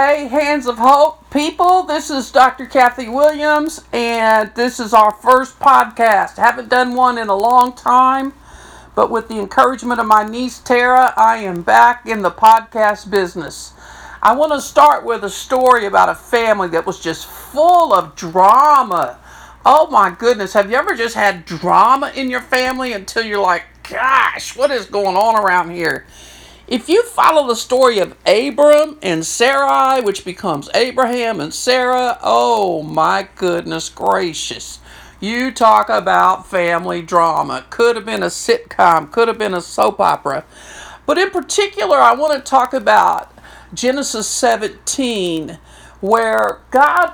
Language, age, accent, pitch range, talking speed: English, 50-69, American, 205-275 Hz, 155 wpm